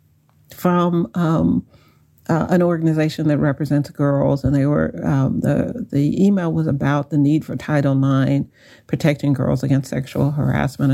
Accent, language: American, English